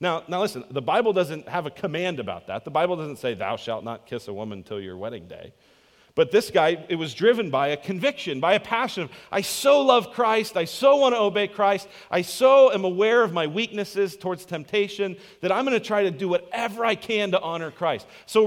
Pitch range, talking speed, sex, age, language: 155-210 Hz, 230 wpm, male, 40-59, English